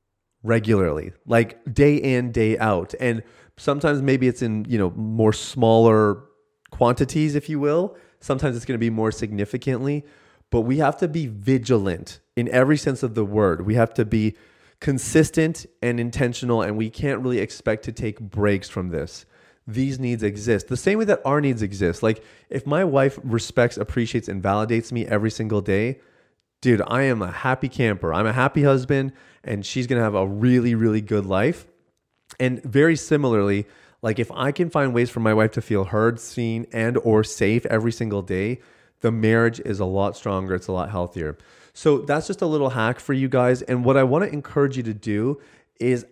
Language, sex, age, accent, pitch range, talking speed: English, male, 30-49, American, 110-135 Hz, 195 wpm